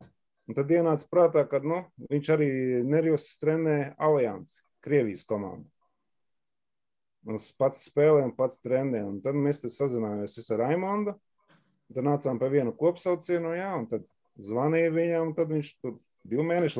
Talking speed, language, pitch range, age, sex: 130 wpm, English, 115-145 Hz, 30-49, male